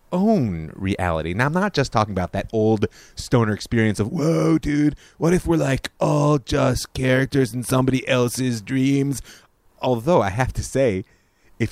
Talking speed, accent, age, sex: 165 wpm, American, 30-49, male